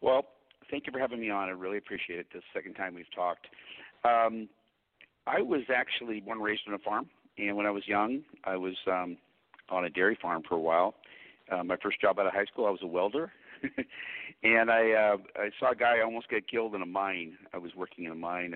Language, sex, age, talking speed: English, male, 50-69, 230 wpm